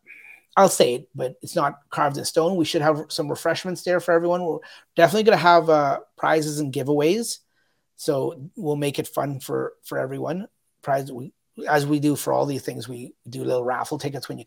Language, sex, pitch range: English, male, 145-170 Hz